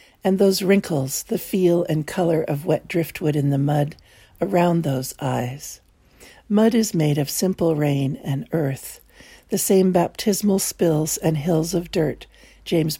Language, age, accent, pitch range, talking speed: English, 60-79, American, 145-185 Hz, 150 wpm